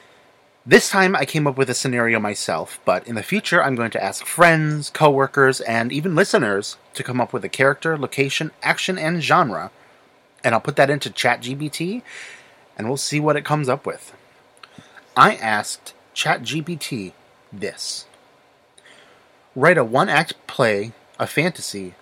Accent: American